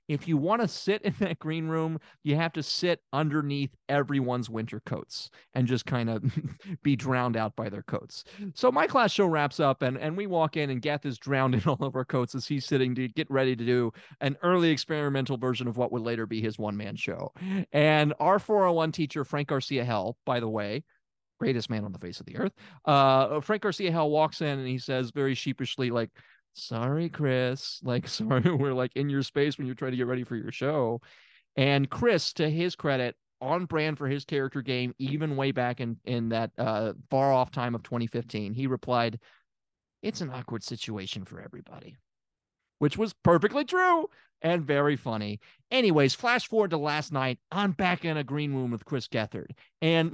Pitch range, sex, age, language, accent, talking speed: 125-170 Hz, male, 30-49, English, American, 200 wpm